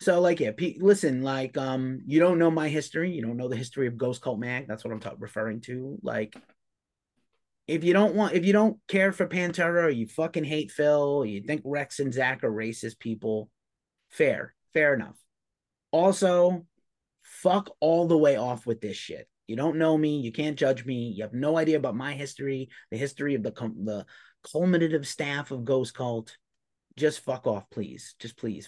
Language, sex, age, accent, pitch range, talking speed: English, male, 30-49, American, 120-155 Hz, 200 wpm